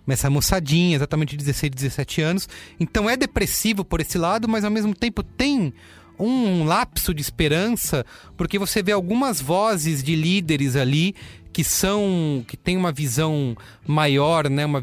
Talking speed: 160 wpm